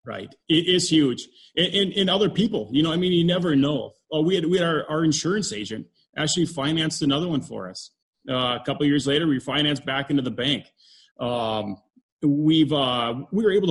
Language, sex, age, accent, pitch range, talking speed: English, male, 30-49, American, 130-160 Hz, 215 wpm